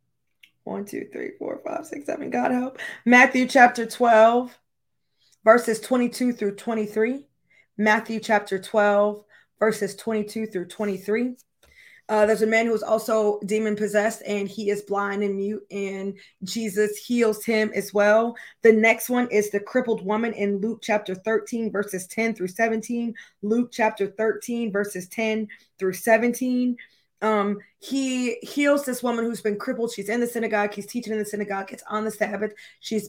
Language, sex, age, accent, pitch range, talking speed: English, female, 20-39, American, 205-230 Hz, 160 wpm